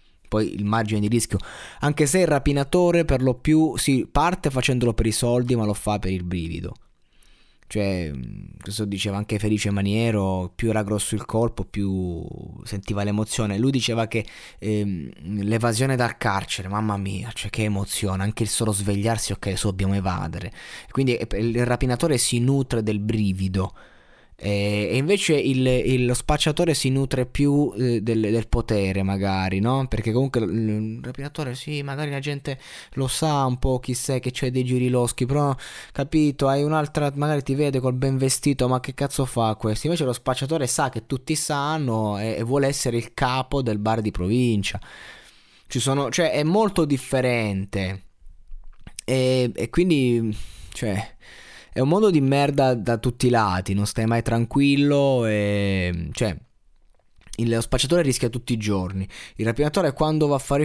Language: Italian